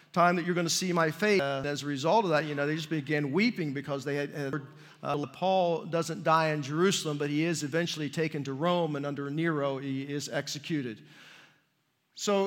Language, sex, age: English, male, 50-69